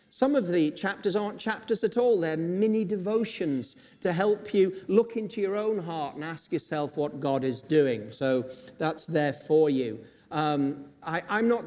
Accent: British